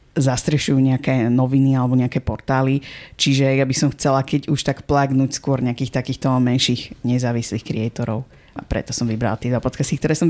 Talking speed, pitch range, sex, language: 170 wpm, 130-150 Hz, female, Slovak